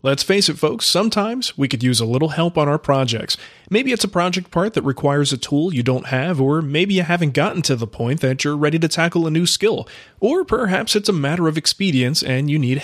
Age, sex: 30-49, male